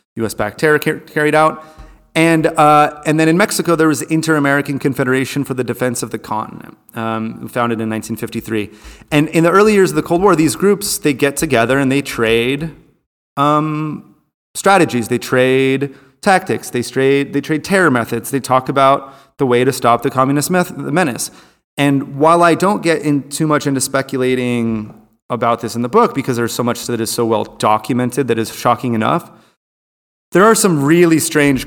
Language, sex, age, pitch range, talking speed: English, male, 30-49, 115-145 Hz, 185 wpm